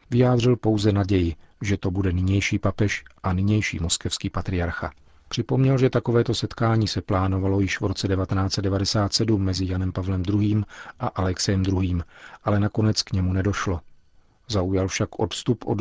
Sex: male